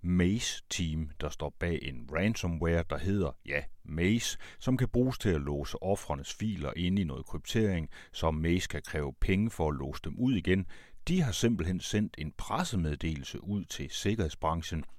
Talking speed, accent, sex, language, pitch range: 170 wpm, native, male, Danish, 75-95 Hz